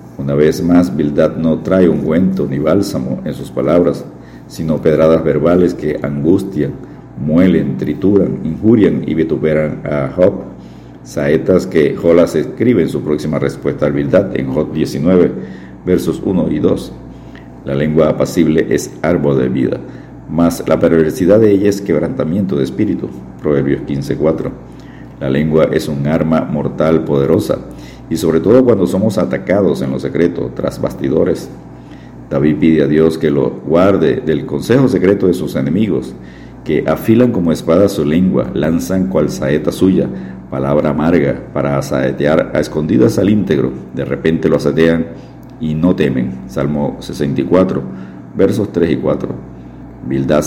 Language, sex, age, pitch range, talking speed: Spanish, male, 50-69, 65-80 Hz, 145 wpm